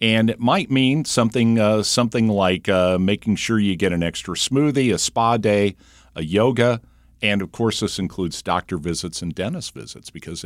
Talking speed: 185 wpm